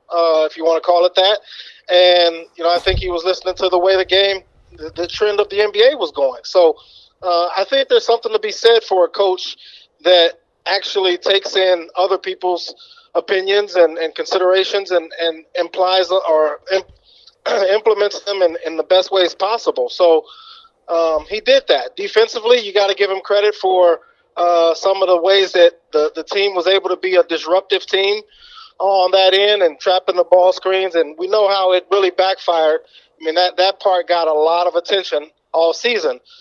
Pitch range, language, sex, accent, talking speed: 175-215 Hz, English, male, American, 195 wpm